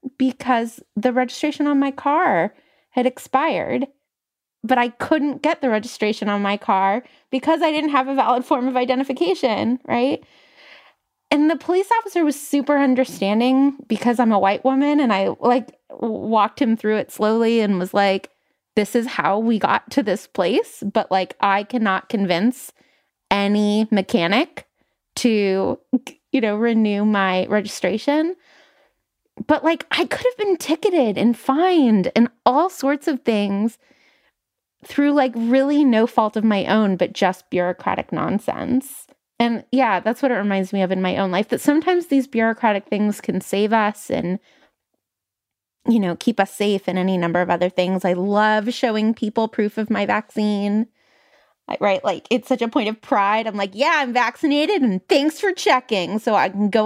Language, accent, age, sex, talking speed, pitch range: English, American, 20-39, female, 165 wpm, 205-275 Hz